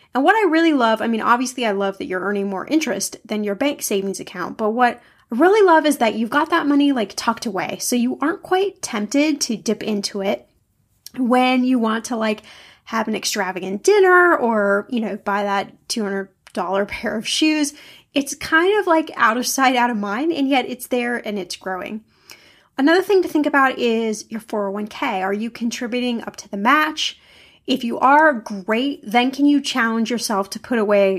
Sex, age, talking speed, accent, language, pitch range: female, 10-29, 200 wpm, American, English, 215-280 Hz